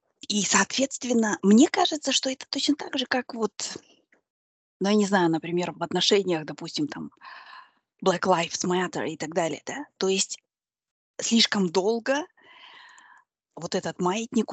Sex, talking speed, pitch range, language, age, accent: female, 140 wpm, 175-255 Hz, Russian, 20-39, native